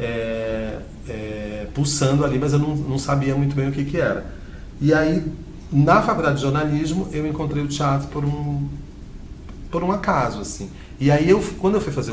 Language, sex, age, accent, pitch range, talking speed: Portuguese, male, 40-59, Brazilian, 105-150 Hz, 190 wpm